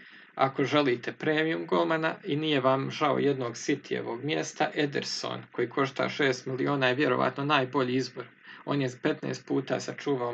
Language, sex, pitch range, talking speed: Croatian, male, 130-155 Hz, 145 wpm